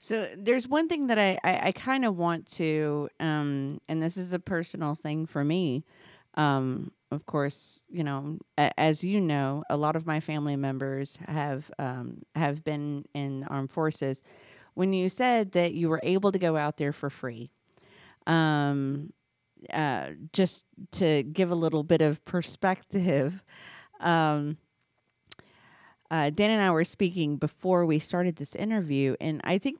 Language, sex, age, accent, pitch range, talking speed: English, female, 30-49, American, 145-185 Hz, 165 wpm